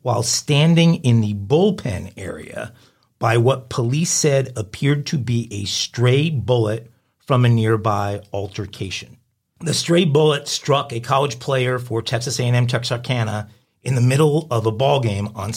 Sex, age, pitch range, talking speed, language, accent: male, 50-69, 110-135 Hz, 150 wpm, English, American